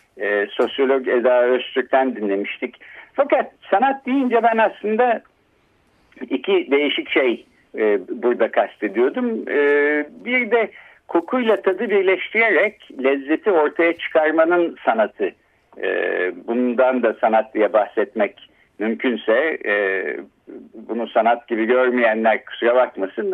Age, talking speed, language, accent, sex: 60-79, 105 wpm, Turkish, native, male